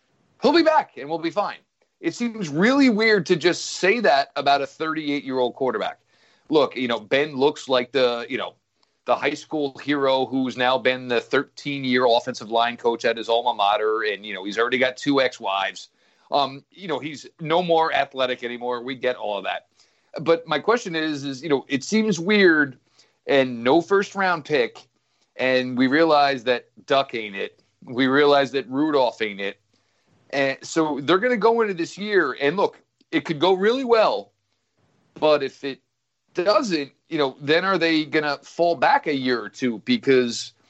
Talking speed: 185 wpm